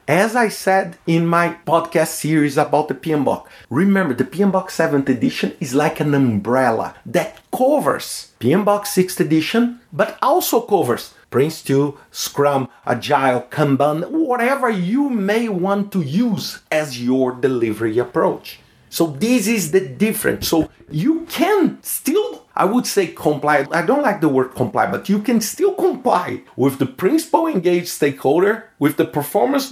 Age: 50-69